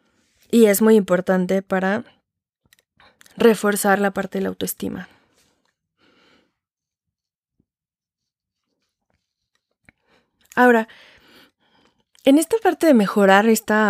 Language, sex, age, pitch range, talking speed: Spanish, female, 20-39, 195-230 Hz, 80 wpm